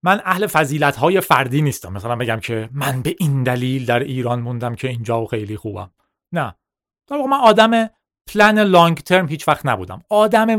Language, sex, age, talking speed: Persian, male, 30-49, 165 wpm